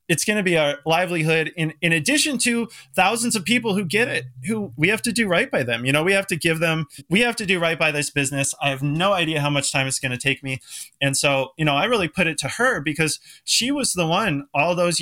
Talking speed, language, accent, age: 270 wpm, English, American, 20-39